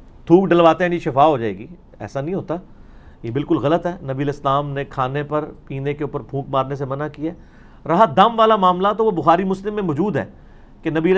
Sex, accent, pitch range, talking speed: male, Indian, 140-180 Hz, 215 wpm